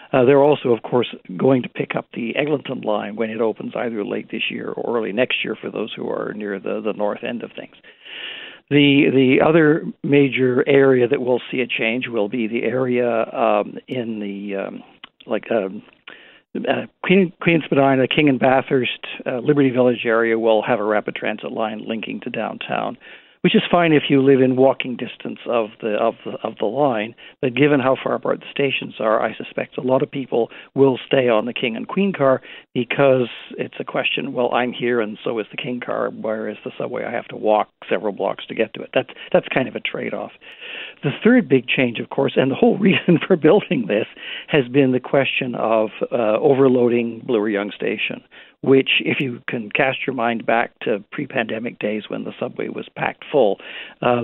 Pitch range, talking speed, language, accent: 115-145 Hz, 205 wpm, English, American